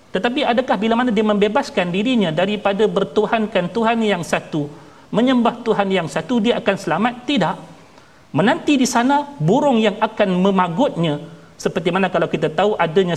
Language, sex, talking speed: Malayalam, male, 150 wpm